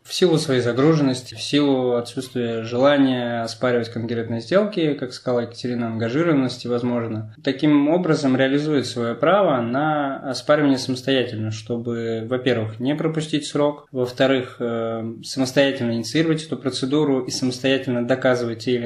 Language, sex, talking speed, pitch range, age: Russian, male, 125 wpm, 120-140 Hz, 20-39